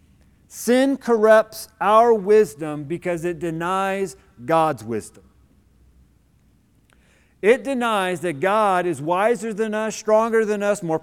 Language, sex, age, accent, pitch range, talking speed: English, male, 40-59, American, 175-225 Hz, 115 wpm